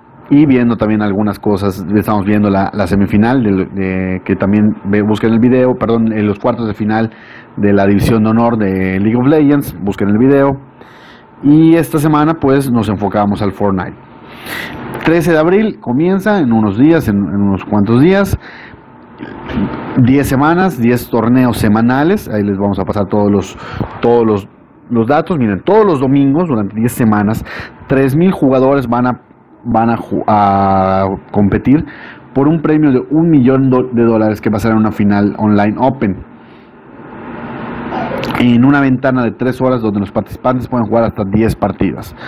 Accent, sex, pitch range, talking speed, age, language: Mexican, male, 105-135 Hz, 165 wpm, 40-59, Spanish